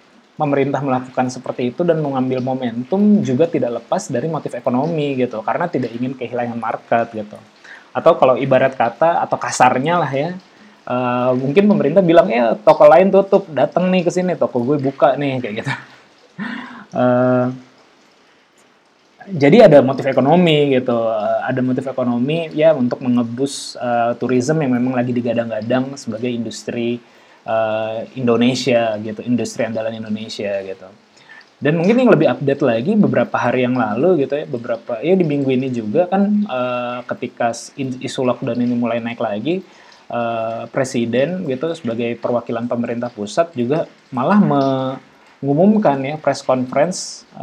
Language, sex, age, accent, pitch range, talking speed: Indonesian, male, 20-39, native, 120-140 Hz, 145 wpm